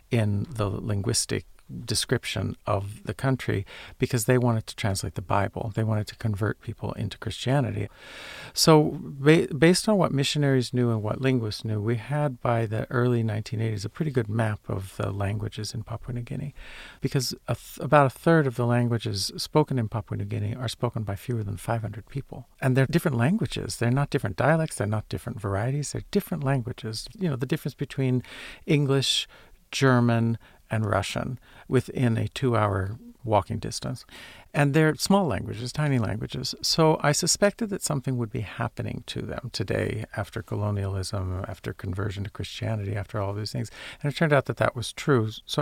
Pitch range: 105-140 Hz